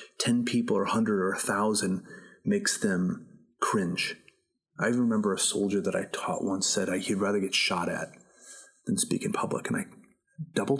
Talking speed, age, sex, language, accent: 180 wpm, 30-49, male, English, American